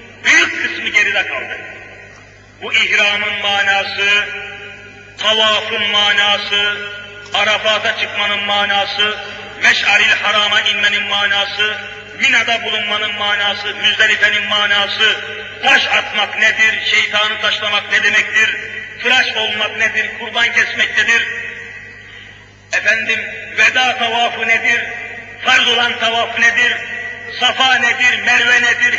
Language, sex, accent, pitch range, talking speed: Turkish, male, native, 205-235 Hz, 95 wpm